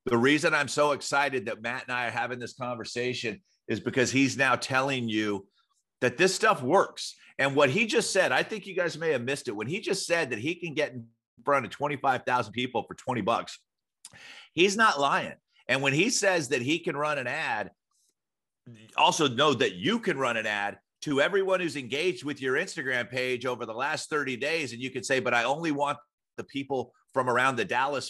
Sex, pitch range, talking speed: male, 120-145 Hz, 215 wpm